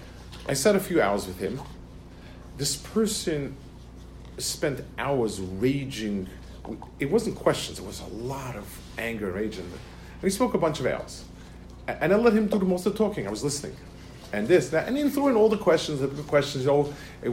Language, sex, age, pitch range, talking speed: English, male, 50-69, 100-155 Hz, 195 wpm